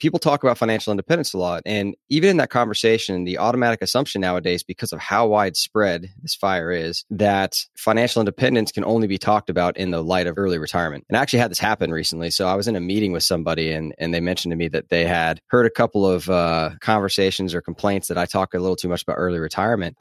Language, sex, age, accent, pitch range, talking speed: English, male, 20-39, American, 85-110 Hz, 235 wpm